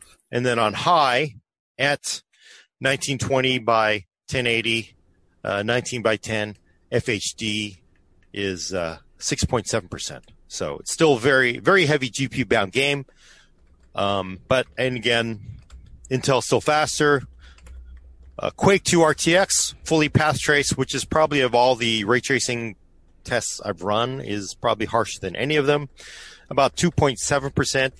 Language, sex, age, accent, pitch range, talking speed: English, male, 30-49, American, 100-140 Hz, 125 wpm